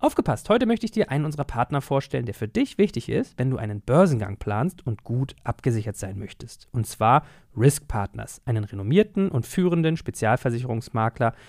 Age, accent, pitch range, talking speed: 40-59, German, 115-175 Hz, 170 wpm